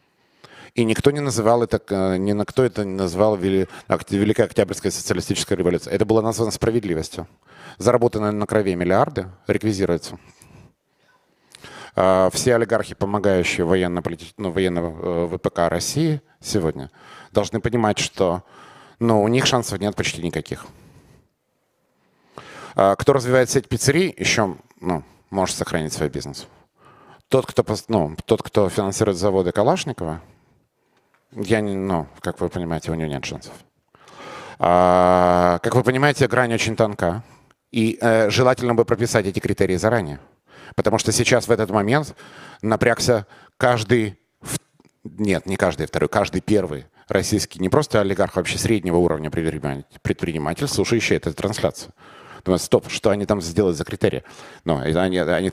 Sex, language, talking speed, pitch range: male, Russian, 135 wpm, 90-115 Hz